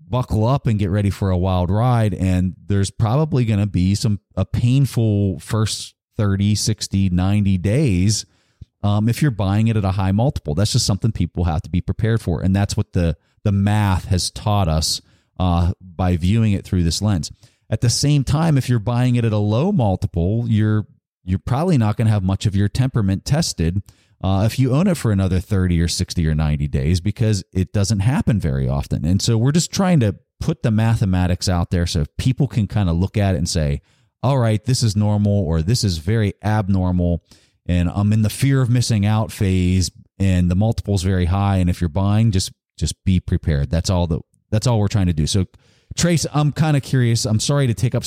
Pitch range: 90-115 Hz